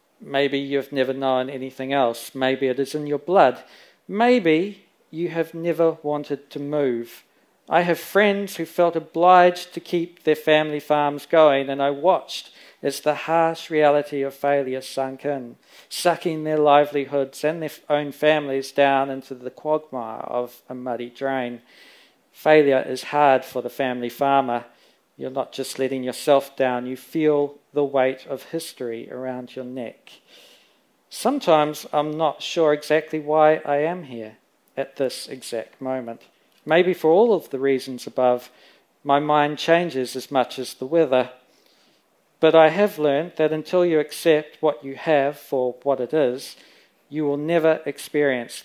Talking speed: 155 wpm